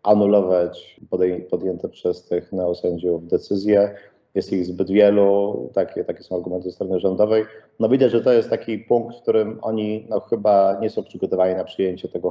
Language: English